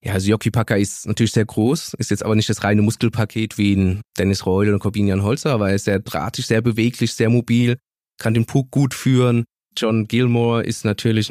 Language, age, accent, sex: German, 20-39, German, male